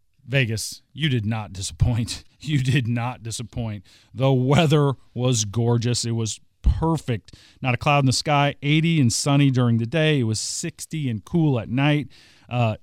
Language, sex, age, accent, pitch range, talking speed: English, male, 40-59, American, 120-150 Hz, 170 wpm